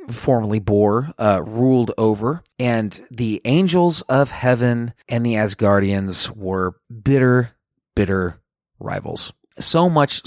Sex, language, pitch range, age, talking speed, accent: male, English, 105-135 Hz, 40-59, 110 wpm, American